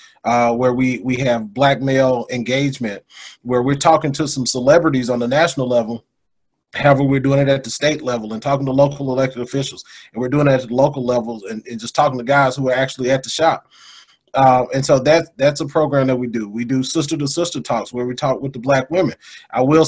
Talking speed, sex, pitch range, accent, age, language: 225 wpm, male, 125-150 Hz, American, 30-49, English